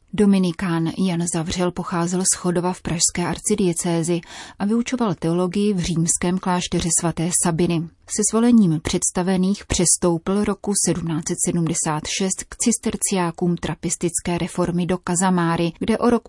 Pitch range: 170-195 Hz